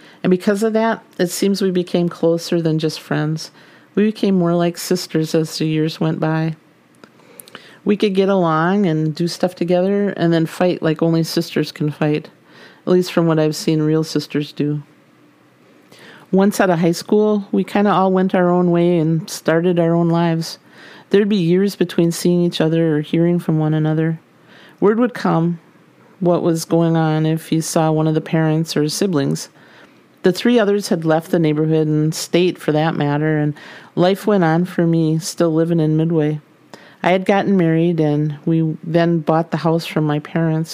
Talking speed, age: 190 wpm, 40-59